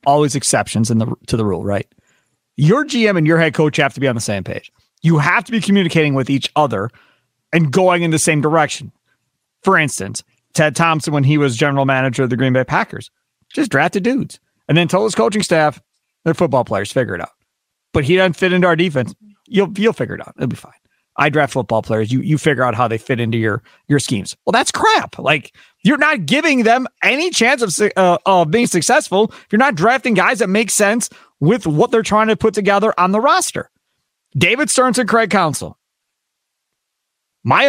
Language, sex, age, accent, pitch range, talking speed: English, male, 40-59, American, 135-215 Hz, 210 wpm